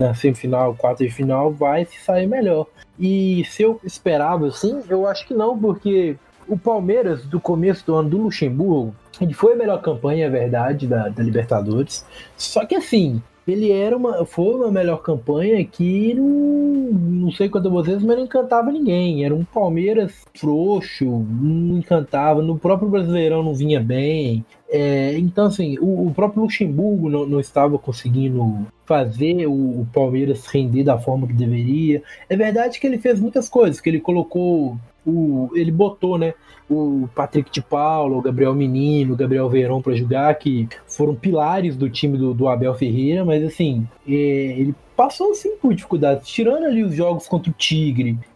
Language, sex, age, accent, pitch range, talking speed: Portuguese, male, 20-39, Brazilian, 135-195 Hz, 170 wpm